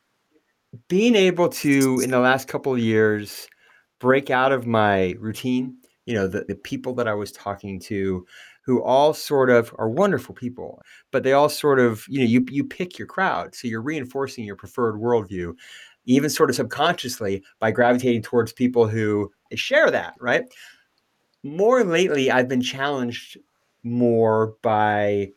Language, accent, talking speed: English, American, 160 wpm